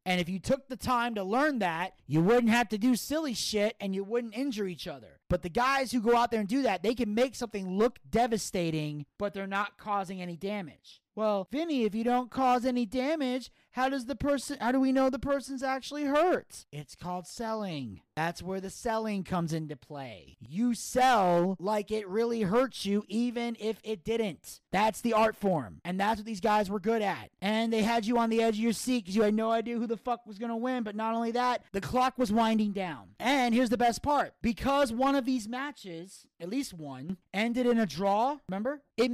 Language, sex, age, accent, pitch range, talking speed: English, male, 30-49, American, 170-235 Hz, 225 wpm